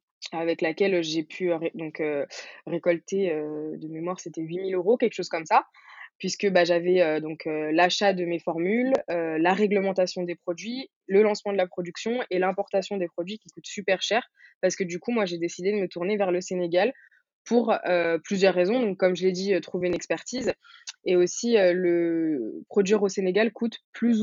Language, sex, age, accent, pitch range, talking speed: French, female, 20-39, French, 170-200 Hz, 200 wpm